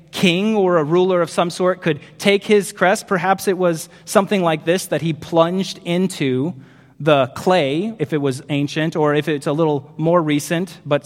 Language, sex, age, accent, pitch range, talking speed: English, male, 30-49, American, 145-195 Hz, 190 wpm